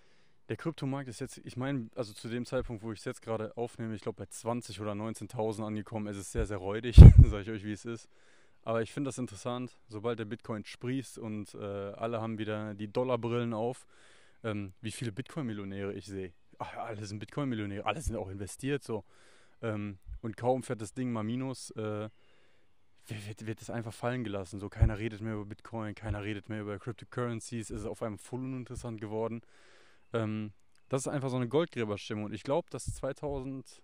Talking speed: 195 wpm